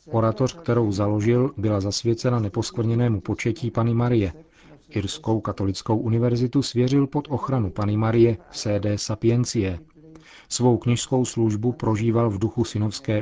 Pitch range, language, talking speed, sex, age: 105-125 Hz, Czech, 120 wpm, male, 40-59